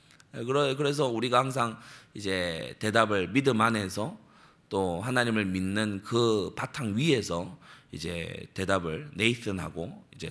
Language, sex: Korean, male